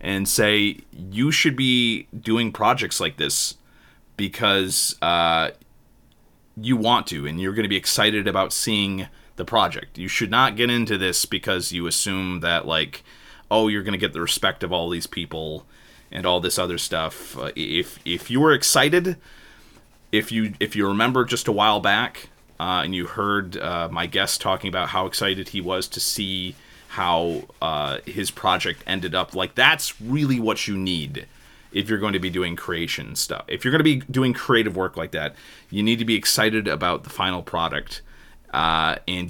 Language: English